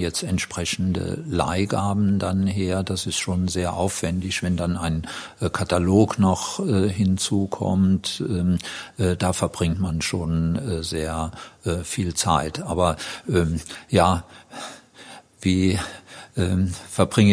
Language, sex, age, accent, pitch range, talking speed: German, male, 50-69, German, 85-95 Hz, 120 wpm